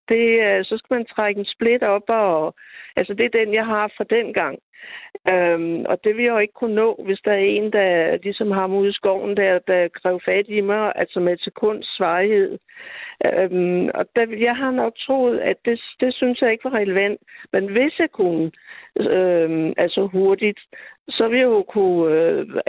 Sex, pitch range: female, 195-245 Hz